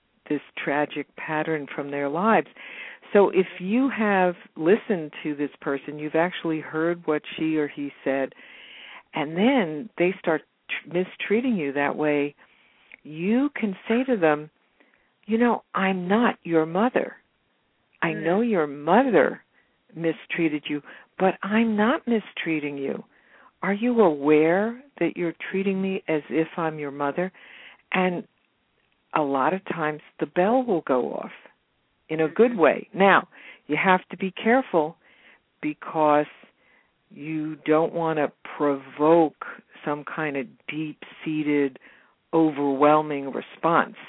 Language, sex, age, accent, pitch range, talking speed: English, female, 60-79, American, 150-190 Hz, 130 wpm